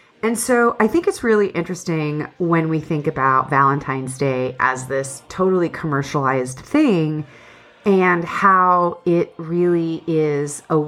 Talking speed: 130 wpm